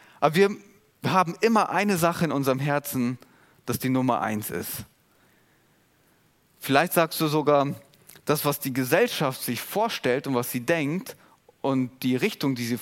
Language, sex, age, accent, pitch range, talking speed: German, male, 30-49, German, 125-160 Hz, 155 wpm